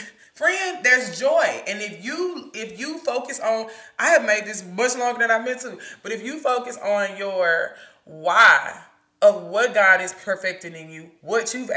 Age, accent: 20-39, American